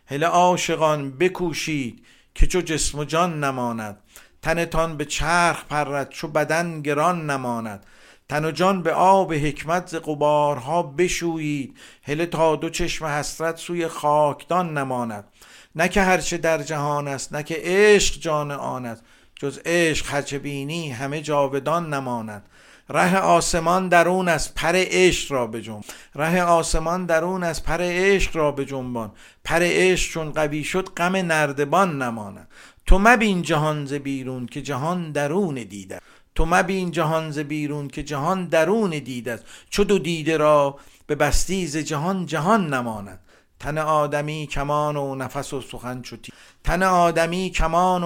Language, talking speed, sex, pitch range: Persian, 145 wpm, male, 135-175 Hz